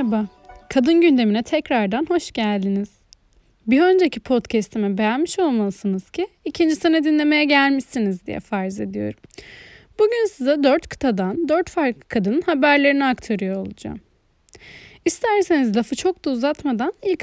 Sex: female